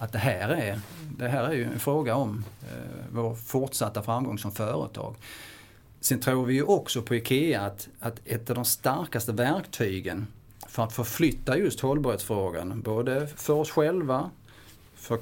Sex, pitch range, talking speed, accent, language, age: male, 105-130 Hz, 160 wpm, Norwegian, Swedish, 30-49